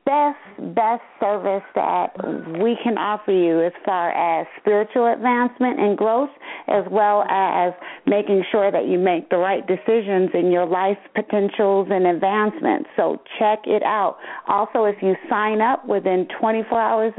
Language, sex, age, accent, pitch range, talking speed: English, female, 40-59, American, 190-240 Hz, 155 wpm